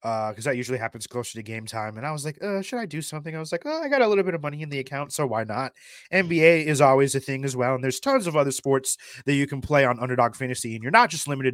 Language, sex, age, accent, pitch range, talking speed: English, male, 20-39, American, 125-185 Hz, 310 wpm